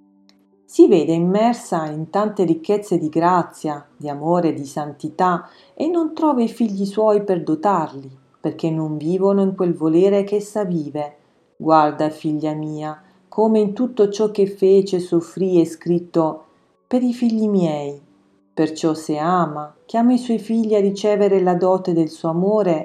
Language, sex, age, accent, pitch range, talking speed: Italian, female, 40-59, native, 155-210 Hz, 155 wpm